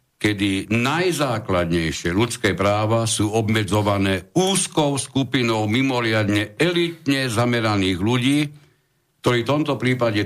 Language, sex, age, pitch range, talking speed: Slovak, male, 60-79, 100-125 Hz, 95 wpm